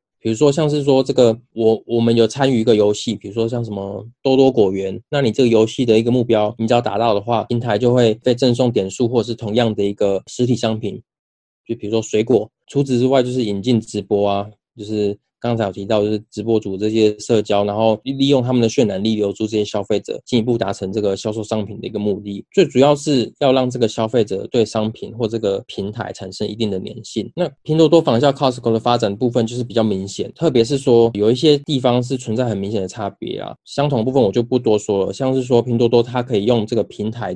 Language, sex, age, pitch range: Chinese, male, 20-39, 105-125 Hz